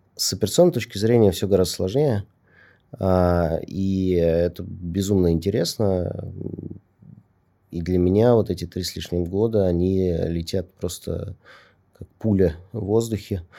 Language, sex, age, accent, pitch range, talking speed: Russian, male, 30-49, native, 90-105 Hz, 120 wpm